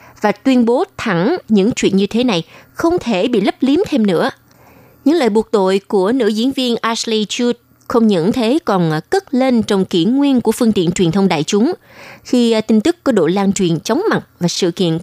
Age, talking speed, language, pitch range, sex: 20-39, 215 wpm, Vietnamese, 190-240 Hz, female